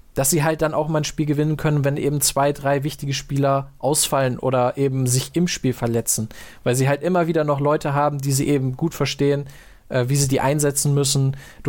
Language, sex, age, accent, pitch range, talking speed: German, male, 20-39, German, 130-150 Hz, 220 wpm